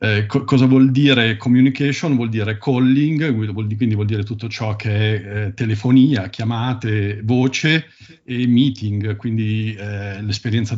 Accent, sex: native, male